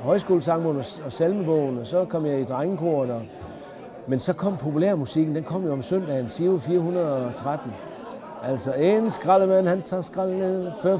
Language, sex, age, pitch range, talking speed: Danish, male, 60-79, 140-175 Hz, 155 wpm